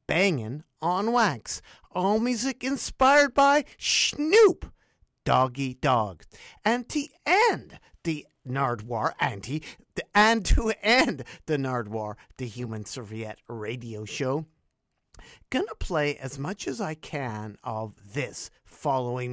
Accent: American